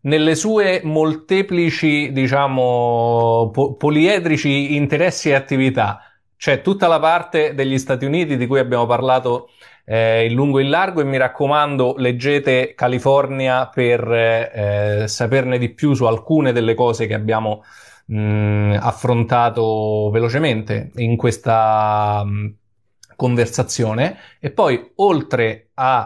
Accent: native